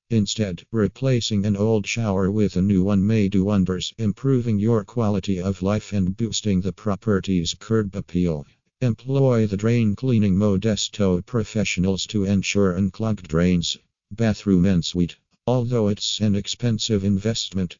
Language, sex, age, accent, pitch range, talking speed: English, male, 50-69, American, 95-110 Hz, 135 wpm